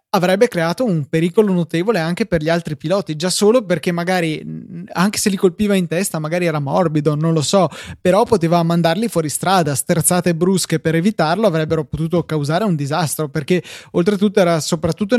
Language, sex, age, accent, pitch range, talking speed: Italian, male, 20-39, native, 150-185 Hz, 175 wpm